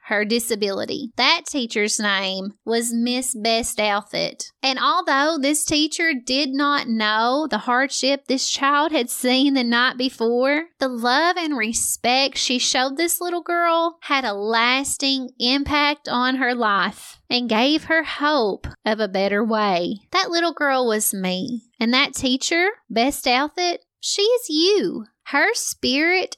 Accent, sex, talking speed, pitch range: American, female, 145 wpm, 230-300 Hz